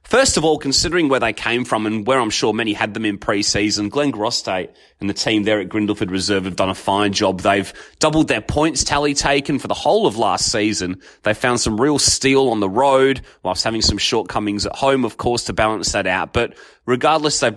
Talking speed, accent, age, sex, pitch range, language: 225 wpm, Australian, 30-49, male, 105-135 Hz, English